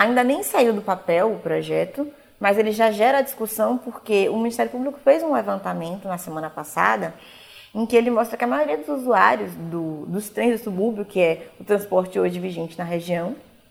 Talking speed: 195 wpm